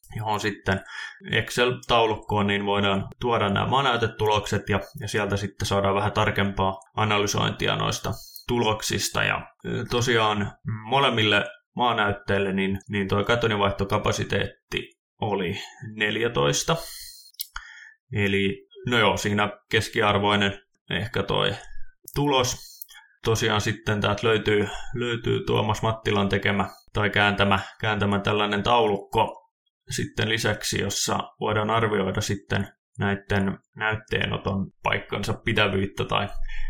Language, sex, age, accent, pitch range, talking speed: Finnish, male, 20-39, native, 100-115 Hz, 95 wpm